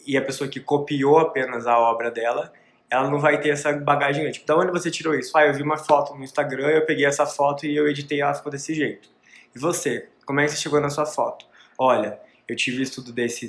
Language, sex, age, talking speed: Portuguese, male, 20-39, 240 wpm